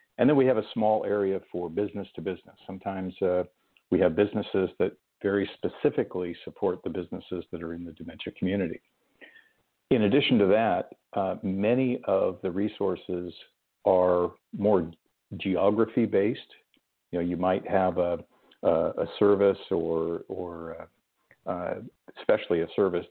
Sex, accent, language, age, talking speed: male, American, English, 50-69, 140 wpm